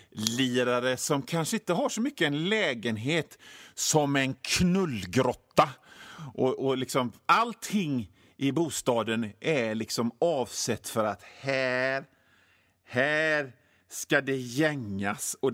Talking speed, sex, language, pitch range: 110 wpm, male, Swedish, 120-180 Hz